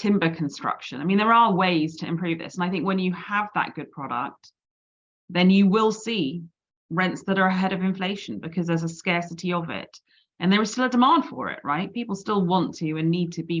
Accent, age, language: British, 30-49, English